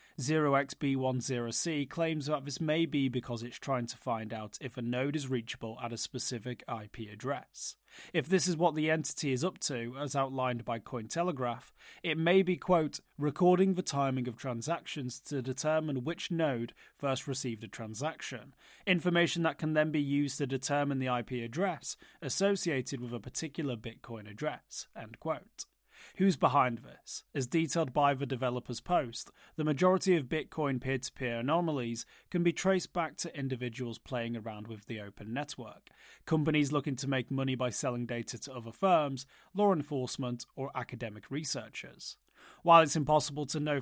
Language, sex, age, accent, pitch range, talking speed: English, male, 30-49, British, 125-160 Hz, 165 wpm